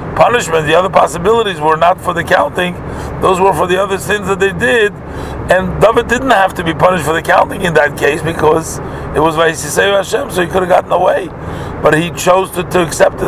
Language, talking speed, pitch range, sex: English, 210 wpm, 160-225 Hz, male